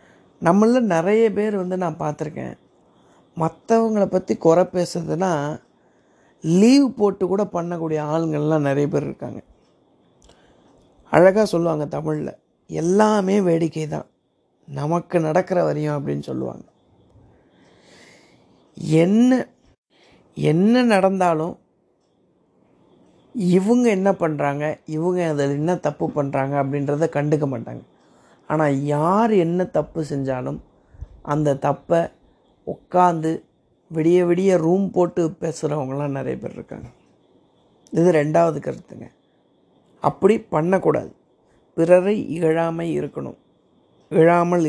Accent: native